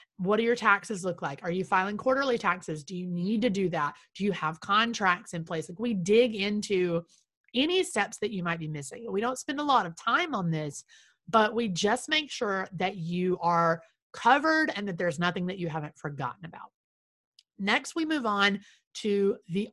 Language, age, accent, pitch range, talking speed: English, 30-49, American, 175-235 Hz, 205 wpm